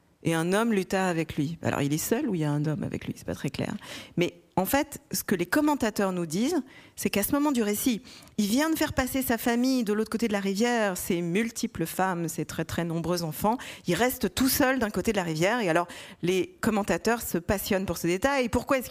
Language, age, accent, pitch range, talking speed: French, 40-59, French, 175-240 Hz, 250 wpm